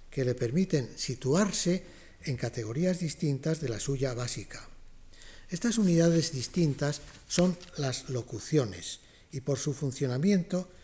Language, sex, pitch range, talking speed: Spanish, male, 120-165 Hz, 115 wpm